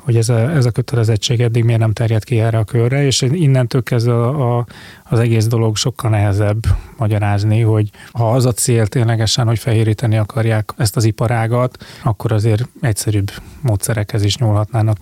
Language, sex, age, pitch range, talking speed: Hungarian, male, 30-49, 115-130 Hz, 165 wpm